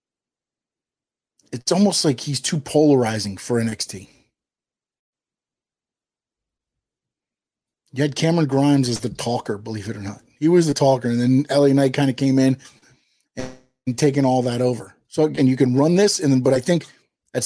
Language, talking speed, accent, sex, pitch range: English, 165 wpm, American, male, 130-175 Hz